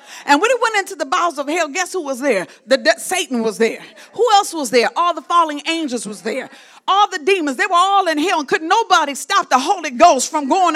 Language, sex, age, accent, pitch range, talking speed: English, female, 40-59, American, 295-395 Hz, 250 wpm